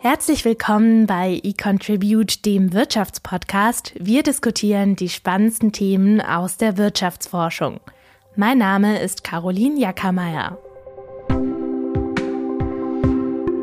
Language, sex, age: German, female, 20-39